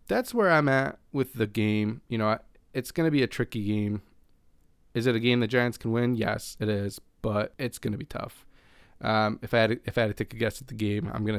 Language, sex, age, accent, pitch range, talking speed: English, male, 20-39, American, 105-120 Hz, 250 wpm